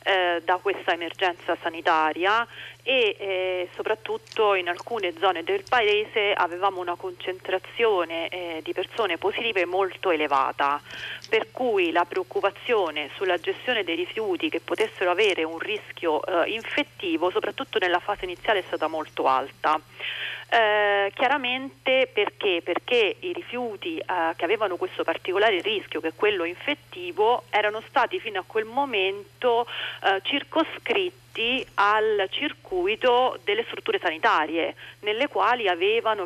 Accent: native